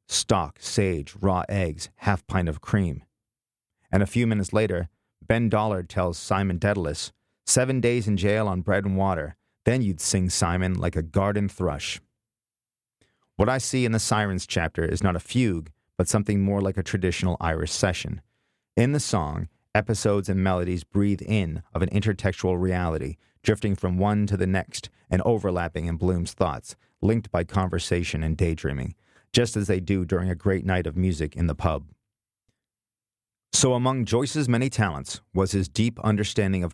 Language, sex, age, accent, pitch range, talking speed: English, male, 30-49, American, 90-110 Hz, 170 wpm